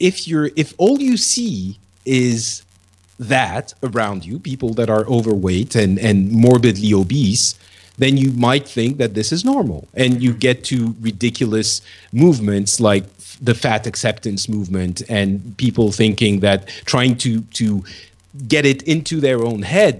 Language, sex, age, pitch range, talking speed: English, male, 40-59, 100-130 Hz, 150 wpm